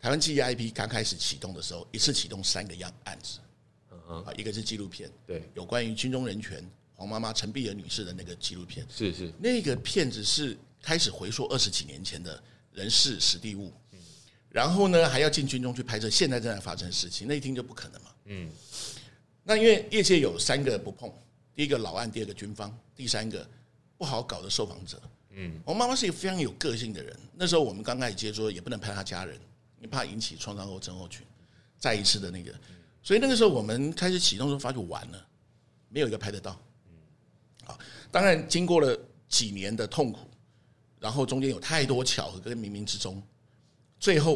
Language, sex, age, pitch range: Chinese, male, 60-79, 100-135 Hz